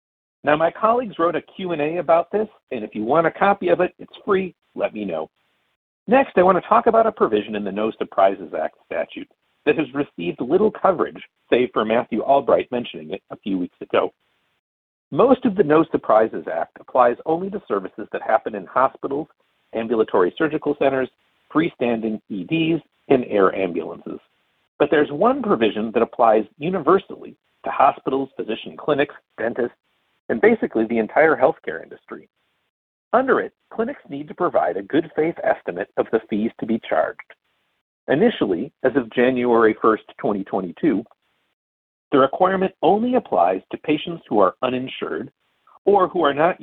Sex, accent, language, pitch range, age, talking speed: male, American, English, 115-190 Hz, 50-69, 160 wpm